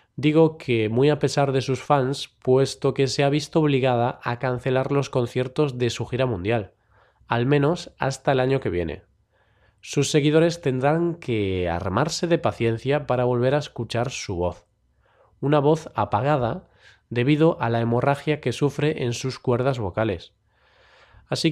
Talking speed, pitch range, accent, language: 155 wpm, 115-150 Hz, Spanish, Spanish